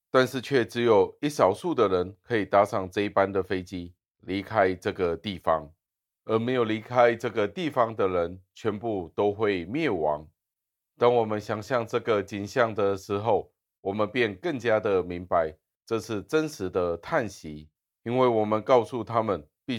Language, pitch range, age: Chinese, 95-115 Hz, 30-49